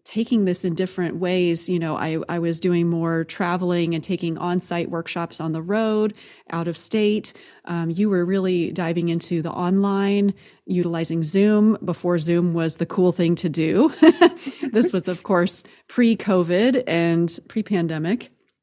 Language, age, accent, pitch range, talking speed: English, 30-49, American, 170-215 Hz, 155 wpm